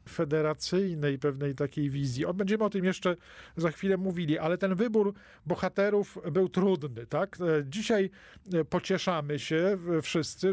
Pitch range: 145-170 Hz